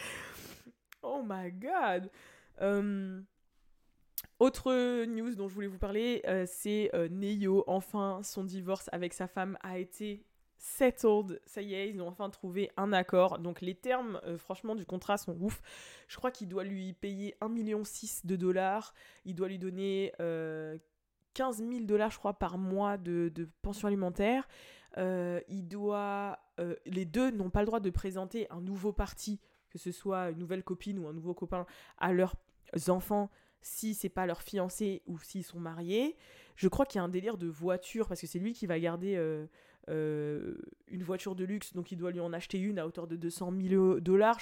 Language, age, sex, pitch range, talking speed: French, 20-39, female, 180-205 Hz, 185 wpm